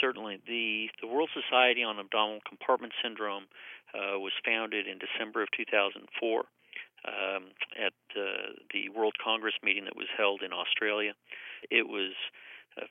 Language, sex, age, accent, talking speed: English, male, 40-59, American, 145 wpm